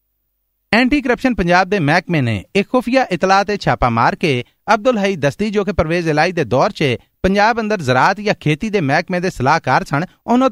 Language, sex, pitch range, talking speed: Punjabi, male, 145-205 Hz, 190 wpm